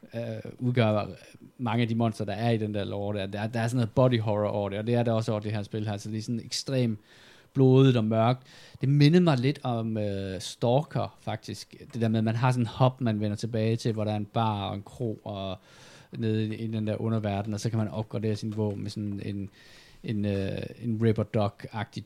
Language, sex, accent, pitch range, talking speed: Danish, male, native, 105-130 Hz, 240 wpm